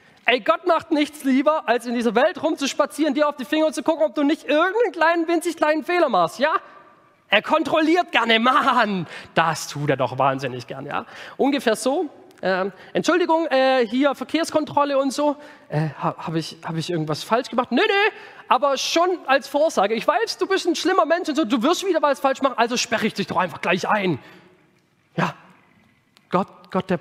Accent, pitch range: German, 175-295 Hz